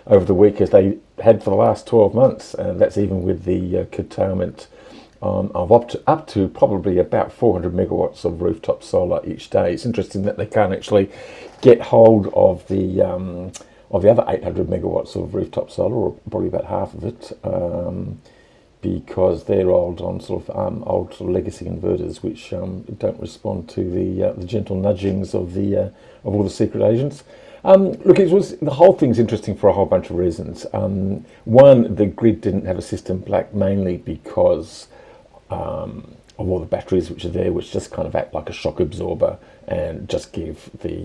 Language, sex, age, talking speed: English, male, 50-69, 195 wpm